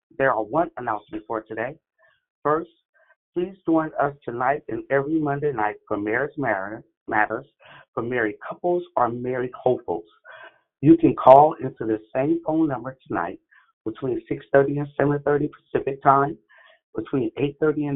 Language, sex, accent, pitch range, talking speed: English, male, American, 125-160 Hz, 140 wpm